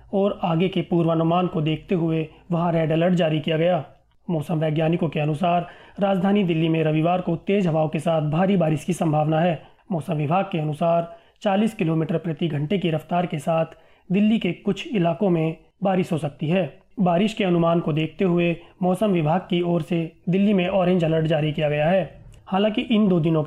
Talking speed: 190 wpm